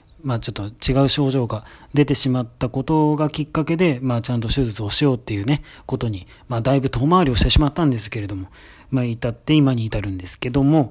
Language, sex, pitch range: Japanese, male, 110-140 Hz